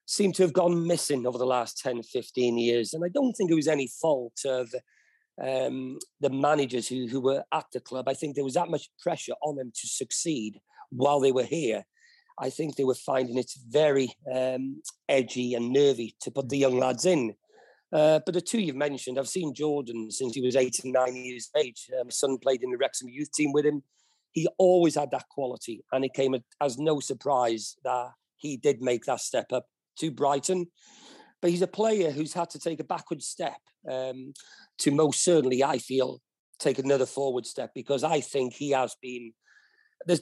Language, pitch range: English, 130-160 Hz